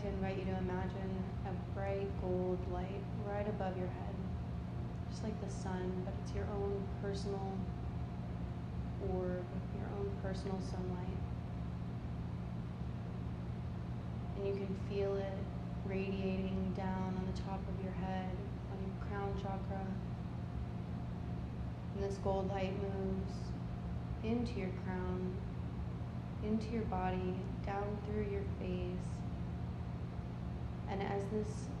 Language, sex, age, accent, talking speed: English, female, 20-39, American, 115 wpm